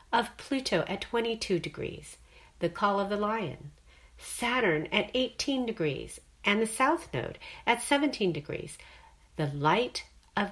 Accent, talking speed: American, 135 wpm